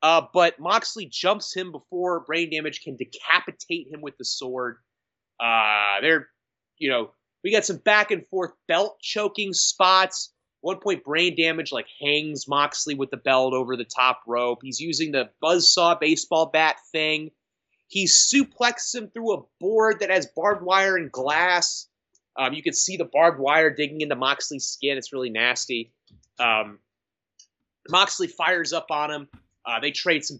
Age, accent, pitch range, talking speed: 30-49, American, 135-195 Hz, 165 wpm